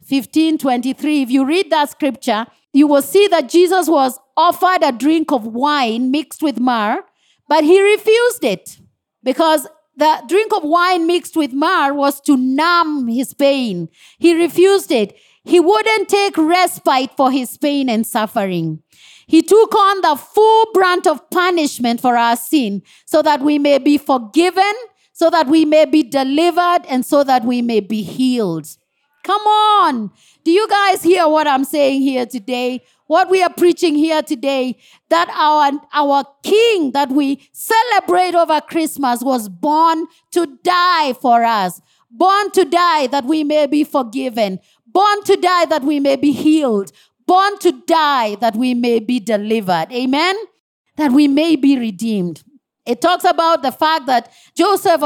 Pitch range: 255-345 Hz